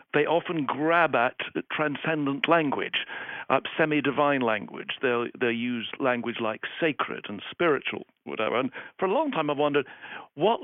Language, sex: English, male